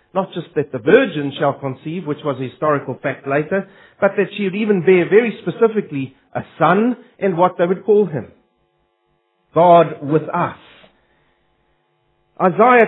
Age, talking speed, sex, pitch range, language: 40-59, 155 wpm, male, 160-205 Hz, English